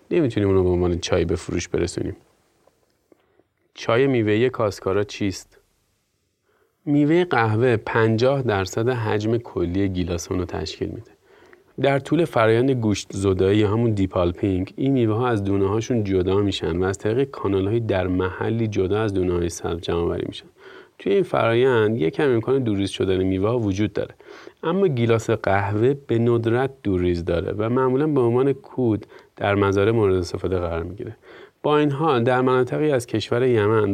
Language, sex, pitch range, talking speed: Persian, male, 95-125 Hz, 155 wpm